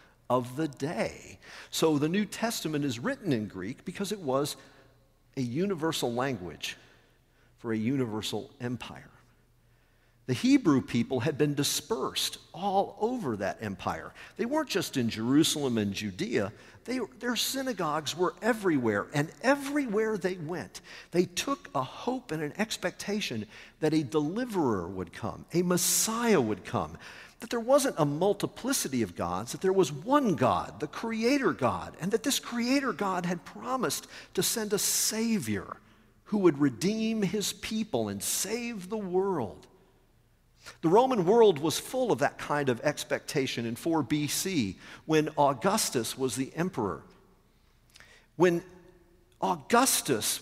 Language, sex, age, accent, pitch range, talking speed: English, male, 50-69, American, 135-215 Hz, 140 wpm